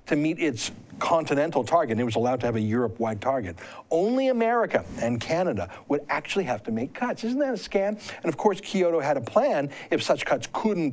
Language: English